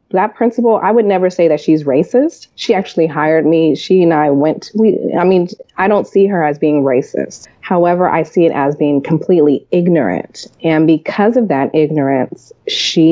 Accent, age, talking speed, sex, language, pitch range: American, 30-49, 190 wpm, female, English, 155-190 Hz